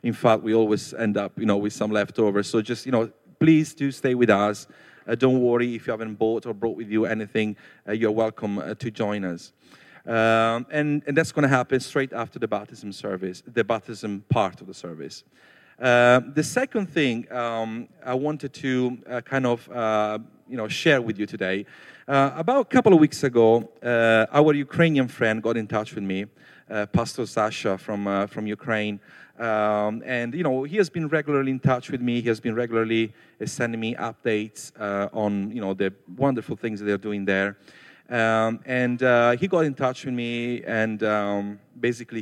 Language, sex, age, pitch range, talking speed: English, male, 40-59, 105-125 Hz, 200 wpm